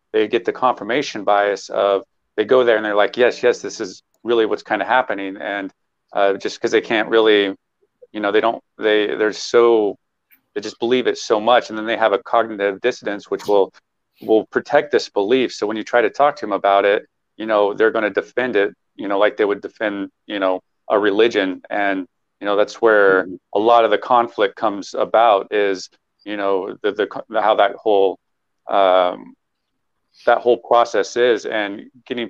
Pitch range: 100-130 Hz